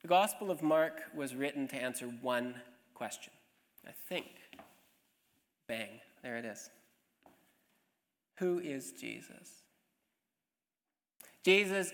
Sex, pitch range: male, 140-190 Hz